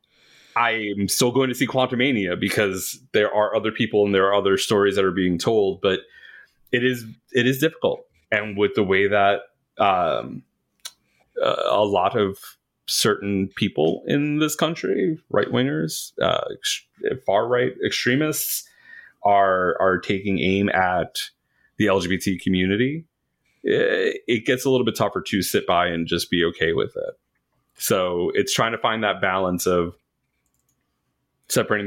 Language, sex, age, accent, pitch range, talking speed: English, male, 30-49, American, 95-135 Hz, 155 wpm